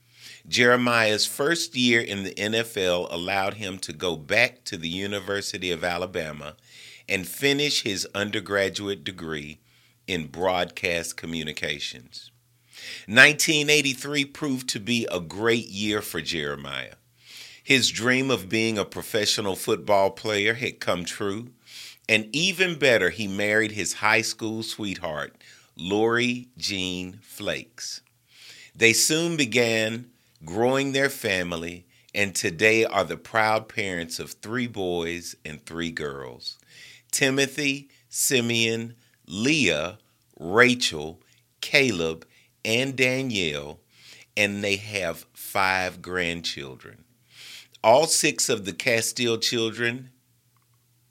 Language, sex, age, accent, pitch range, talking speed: English, male, 40-59, American, 95-125 Hz, 110 wpm